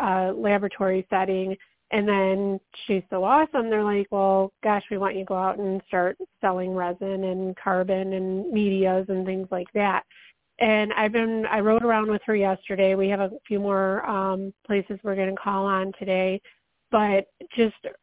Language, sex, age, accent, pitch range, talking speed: English, female, 30-49, American, 190-220 Hz, 180 wpm